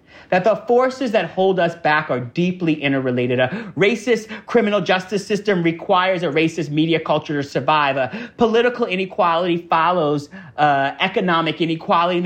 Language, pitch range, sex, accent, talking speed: English, 160-210 Hz, male, American, 145 wpm